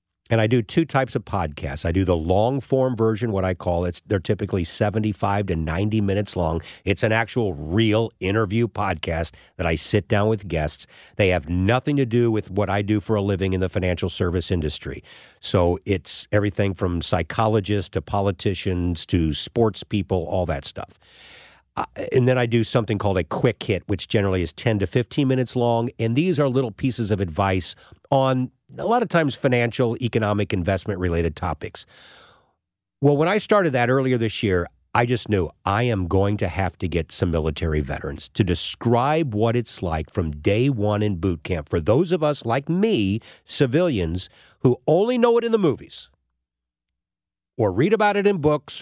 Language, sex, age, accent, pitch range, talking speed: English, male, 50-69, American, 90-125 Hz, 185 wpm